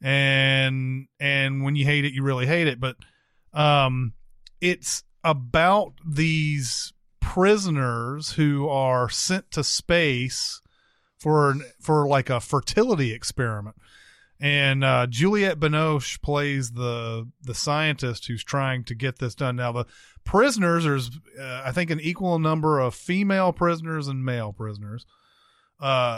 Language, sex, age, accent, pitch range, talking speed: English, male, 30-49, American, 120-150 Hz, 135 wpm